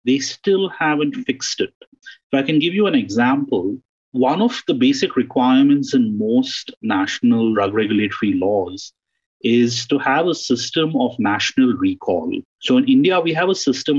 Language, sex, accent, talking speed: English, male, Indian, 165 wpm